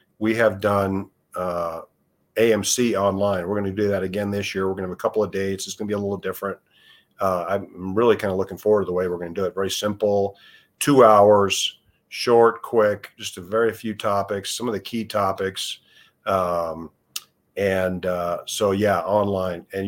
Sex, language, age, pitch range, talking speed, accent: male, English, 50-69, 95-115 Hz, 200 wpm, American